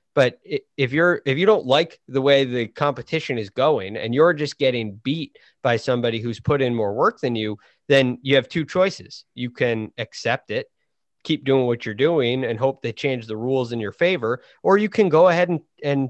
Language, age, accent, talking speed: English, 30-49, American, 215 wpm